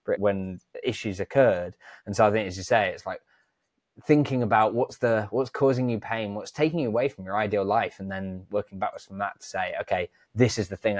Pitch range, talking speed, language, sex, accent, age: 100-125 Hz, 225 wpm, English, male, British, 20-39